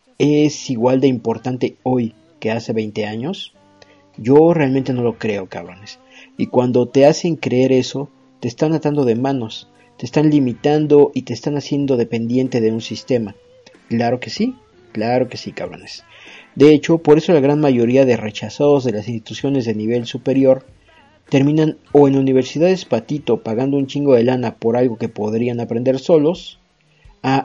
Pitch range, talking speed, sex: 115-145 Hz, 165 wpm, male